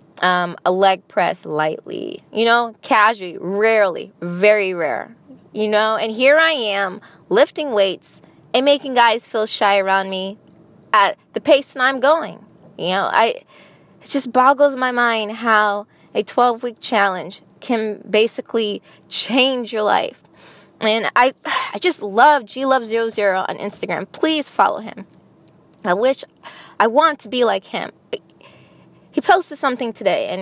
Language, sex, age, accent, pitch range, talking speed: English, female, 10-29, American, 200-260 Hz, 150 wpm